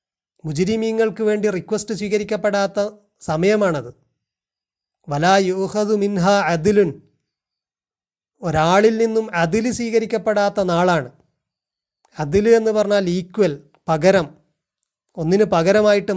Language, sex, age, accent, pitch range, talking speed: Malayalam, male, 30-49, native, 160-205 Hz, 80 wpm